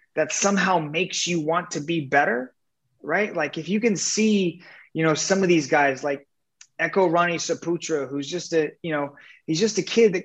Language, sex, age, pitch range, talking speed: English, male, 20-39, 145-185 Hz, 200 wpm